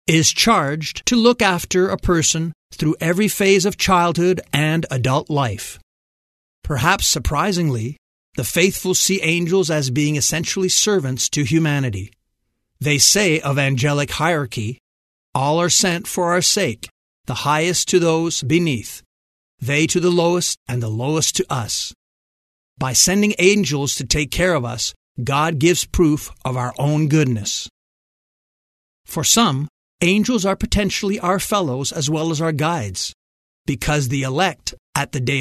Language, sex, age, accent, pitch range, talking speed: English, male, 50-69, American, 130-175 Hz, 145 wpm